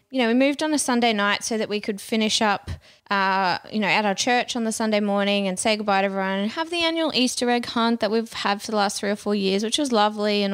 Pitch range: 200-245 Hz